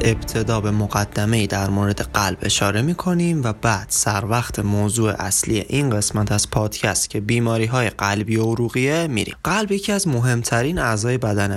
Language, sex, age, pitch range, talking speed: Persian, male, 20-39, 105-135 Hz, 155 wpm